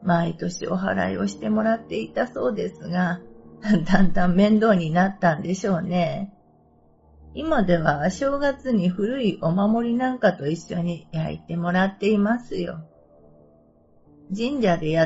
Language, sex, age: Japanese, female, 50-69